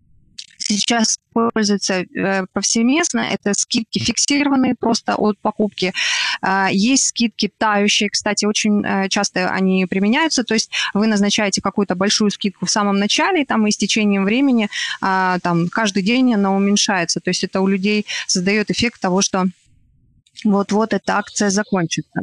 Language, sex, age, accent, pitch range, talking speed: Ukrainian, female, 20-39, native, 190-225 Hz, 140 wpm